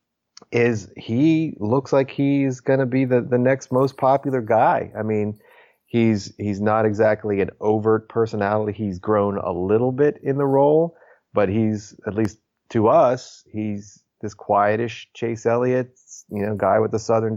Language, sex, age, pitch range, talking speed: English, male, 30-49, 105-120 Hz, 160 wpm